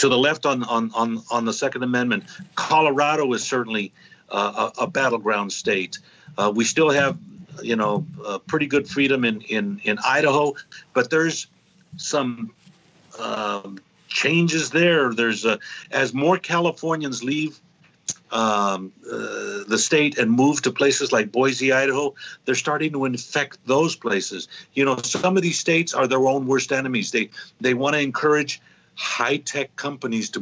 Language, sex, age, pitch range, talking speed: English, male, 50-69, 115-150 Hz, 160 wpm